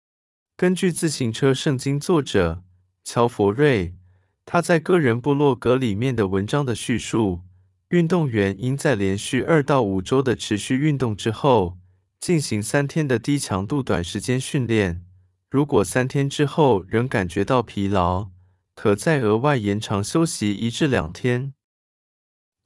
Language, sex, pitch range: Chinese, male, 95-145 Hz